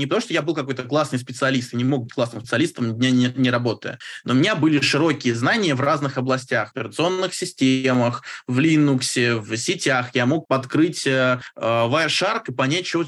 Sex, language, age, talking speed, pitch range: male, Russian, 20-39, 190 wpm, 120-145 Hz